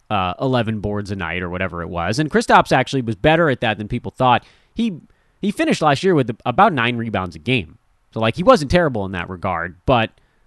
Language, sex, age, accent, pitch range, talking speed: English, male, 30-49, American, 115-165 Hz, 225 wpm